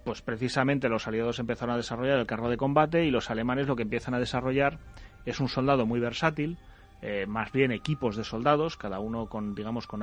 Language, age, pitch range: Spanish, 30-49, 110-135 Hz